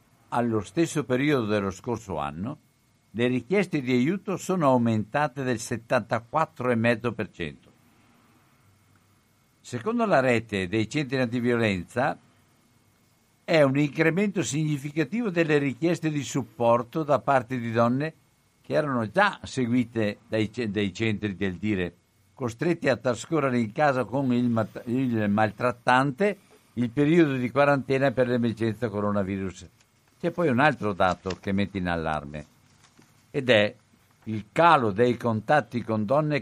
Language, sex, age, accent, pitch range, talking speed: Italian, male, 60-79, native, 110-135 Hz, 125 wpm